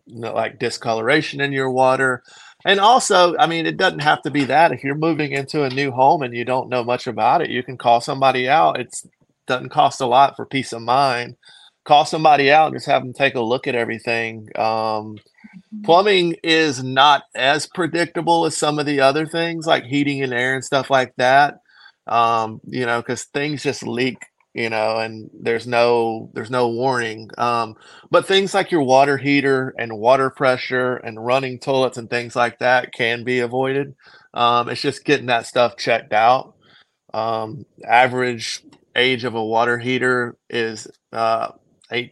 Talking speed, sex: 185 wpm, male